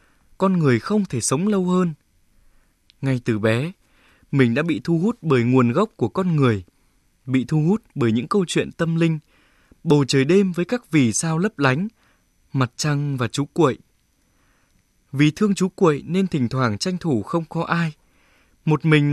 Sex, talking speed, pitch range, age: male, 180 wpm, 120-165 Hz, 20-39